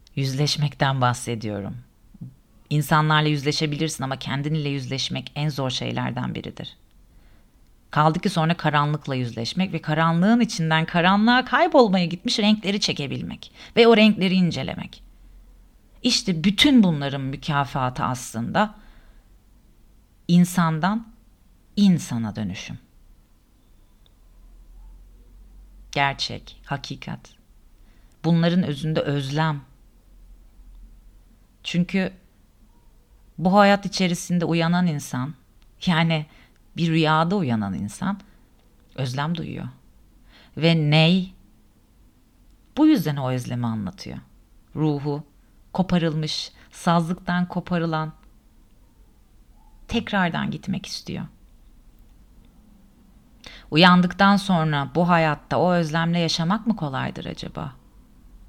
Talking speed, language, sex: 80 wpm, Turkish, female